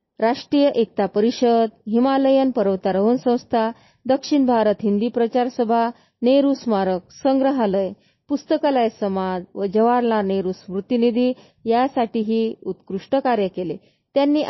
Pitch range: 210-270 Hz